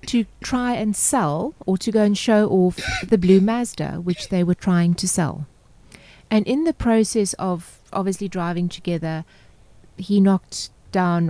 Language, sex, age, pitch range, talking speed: English, female, 30-49, 180-220 Hz, 160 wpm